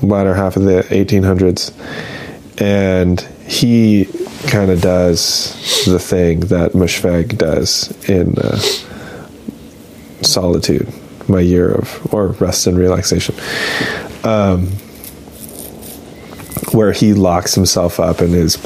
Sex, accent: male, American